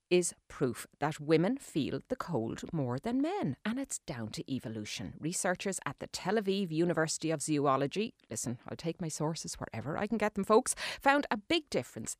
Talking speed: 185 wpm